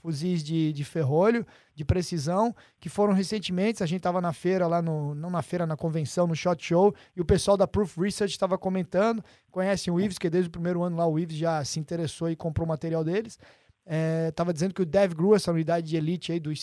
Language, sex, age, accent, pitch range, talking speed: Portuguese, male, 20-39, Brazilian, 165-200 Hz, 225 wpm